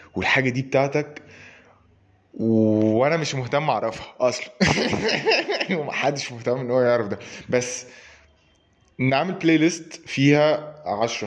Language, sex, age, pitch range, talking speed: Arabic, male, 20-39, 105-140 Hz, 110 wpm